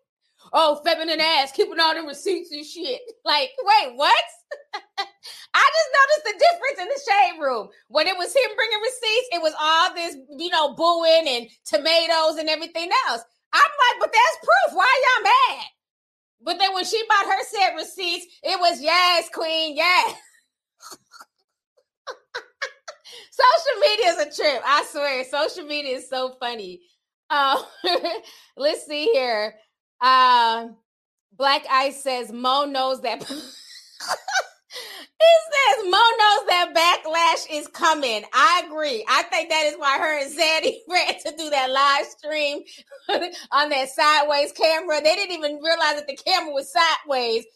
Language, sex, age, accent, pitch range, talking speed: English, female, 20-39, American, 275-365 Hz, 150 wpm